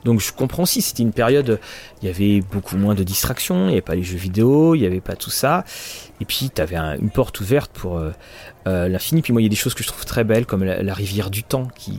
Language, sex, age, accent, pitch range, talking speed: French, male, 30-49, French, 100-135 Hz, 290 wpm